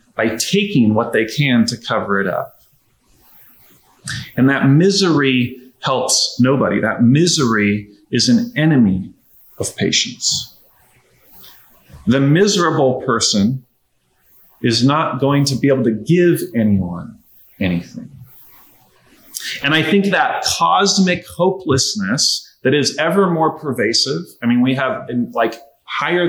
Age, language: 40-59, English